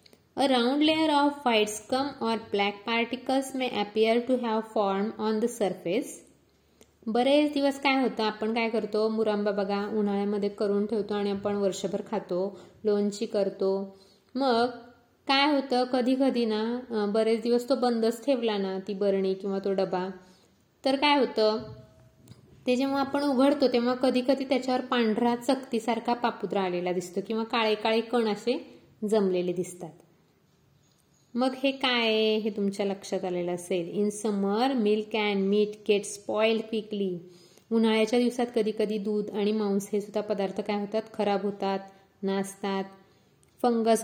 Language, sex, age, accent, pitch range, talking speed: Marathi, female, 20-39, native, 200-245 Hz, 135 wpm